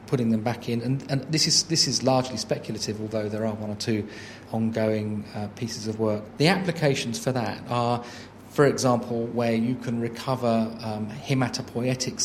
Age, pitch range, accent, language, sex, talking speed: 40-59, 110-125 Hz, British, English, male, 175 wpm